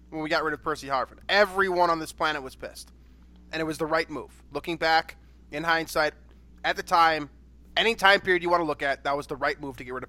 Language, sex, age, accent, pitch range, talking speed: English, male, 20-39, American, 135-180 Hz, 255 wpm